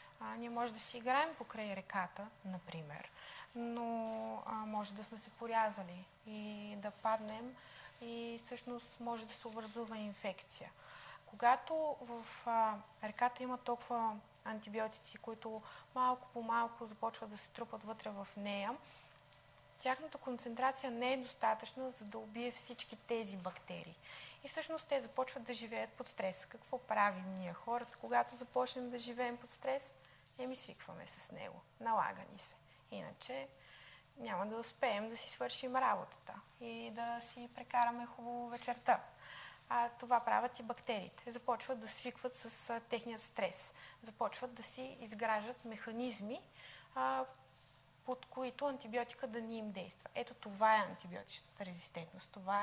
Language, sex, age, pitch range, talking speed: Bulgarian, female, 20-39, 210-245 Hz, 140 wpm